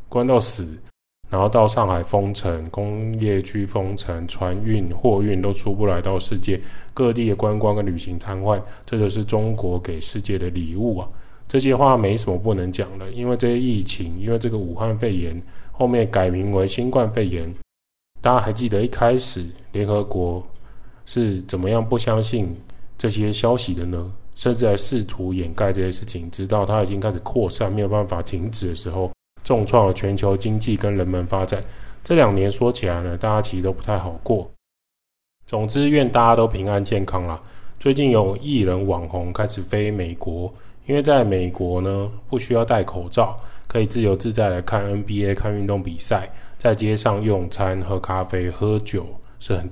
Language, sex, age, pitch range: Chinese, male, 20-39, 95-110 Hz